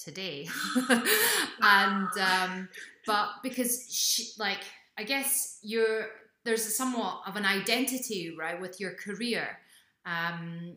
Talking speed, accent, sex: 115 wpm, British, female